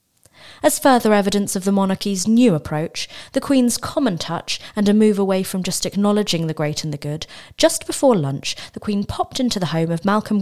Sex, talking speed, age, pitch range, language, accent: female, 200 wpm, 30-49, 165-225 Hz, English, British